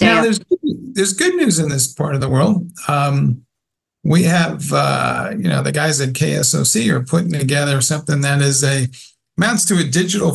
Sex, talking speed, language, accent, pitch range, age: male, 185 wpm, English, American, 125-170 Hz, 50-69